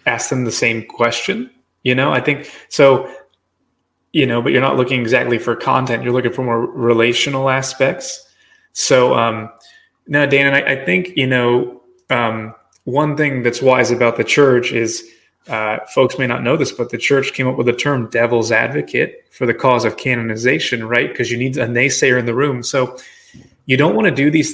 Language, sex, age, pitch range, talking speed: English, male, 20-39, 120-155 Hz, 200 wpm